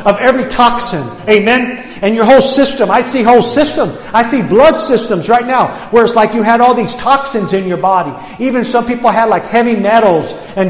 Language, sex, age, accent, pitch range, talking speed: English, male, 50-69, American, 230-265 Hz, 210 wpm